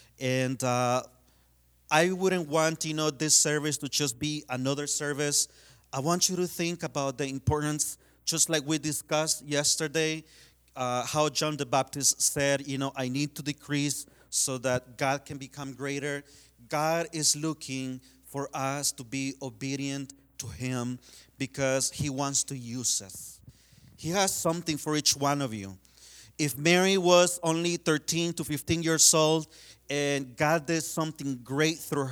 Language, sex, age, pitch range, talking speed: English, male, 40-59, 130-155 Hz, 155 wpm